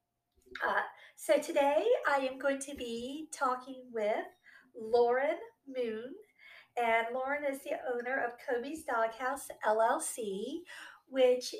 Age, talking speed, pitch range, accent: 50-69, 115 wpm, 225-290 Hz, American